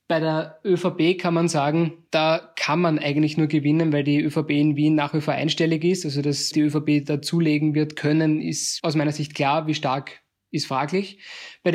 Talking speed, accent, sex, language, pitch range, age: 205 wpm, German, male, German, 150-165 Hz, 20-39